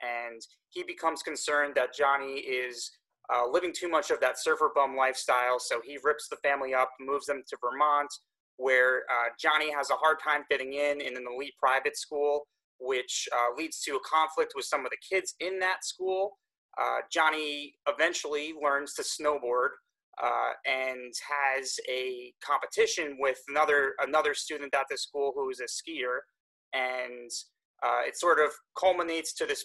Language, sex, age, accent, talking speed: English, male, 30-49, American, 170 wpm